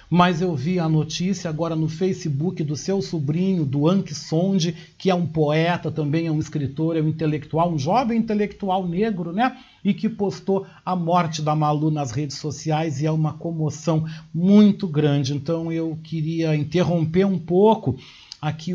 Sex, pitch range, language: male, 155-195 Hz, Portuguese